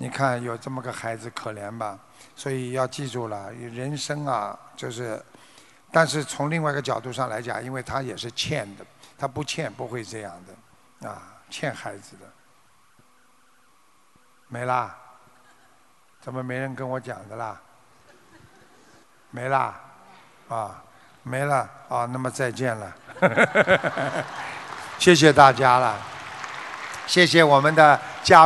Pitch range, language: 125-155 Hz, Chinese